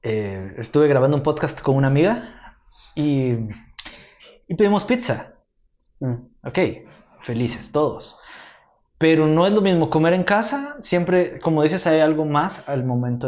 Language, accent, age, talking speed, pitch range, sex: Spanish, Mexican, 20-39, 145 wpm, 115-150 Hz, male